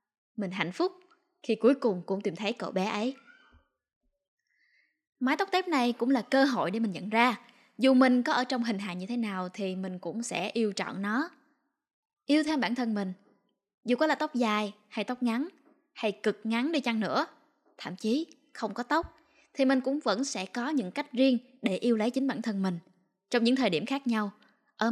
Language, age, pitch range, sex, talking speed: Vietnamese, 10-29, 215-280 Hz, female, 210 wpm